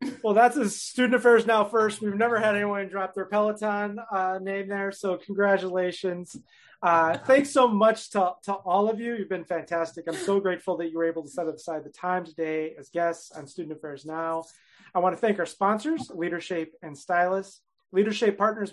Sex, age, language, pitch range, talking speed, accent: male, 30-49, English, 160-205 Hz, 195 wpm, American